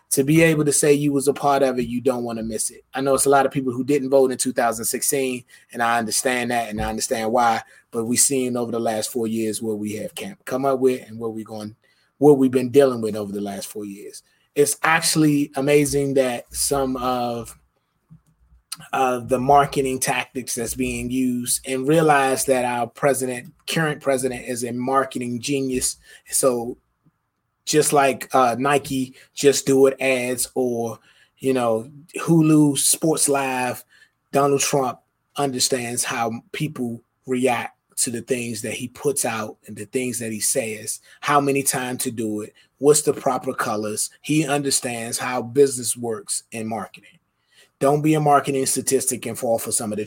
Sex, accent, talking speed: male, American, 180 wpm